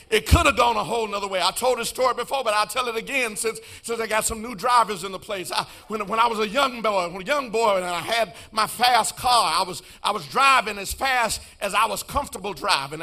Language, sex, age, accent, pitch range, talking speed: English, male, 50-69, American, 195-245 Hz, 265 wpm